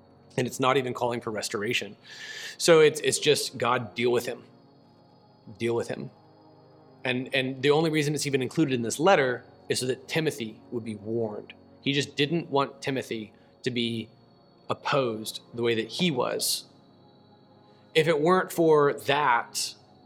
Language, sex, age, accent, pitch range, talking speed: English, male, 30-49, American, 120-160 Hz, 160 wpm